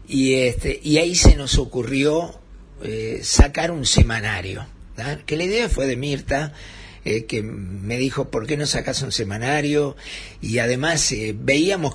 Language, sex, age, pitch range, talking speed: Spanish, male, 50-69, 115-145 Hz, 160 wpm